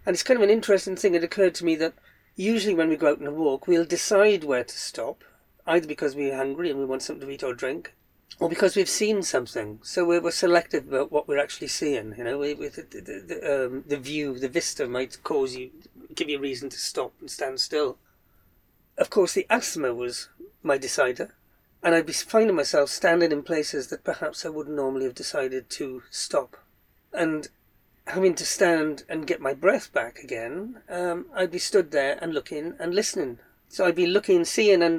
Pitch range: 145-200 Hz